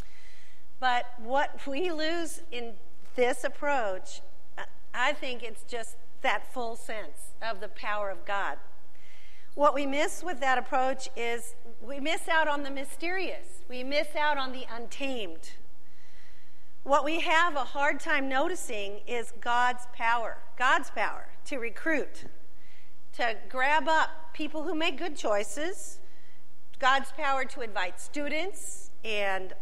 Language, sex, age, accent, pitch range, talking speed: English, female, 50-69, American, 190-275 Hz, 135 wpm